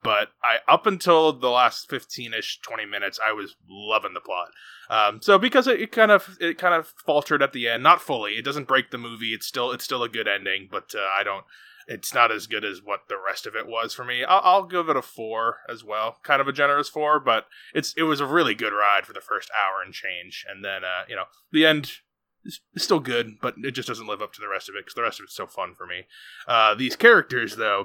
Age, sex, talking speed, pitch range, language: 20-39, male, 260 wpm, 110-145 Hz, English